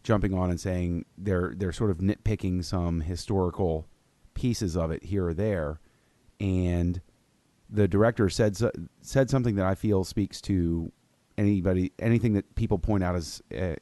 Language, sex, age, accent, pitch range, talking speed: English, male, 30-49, American, 90-105 Hz, 155 wpm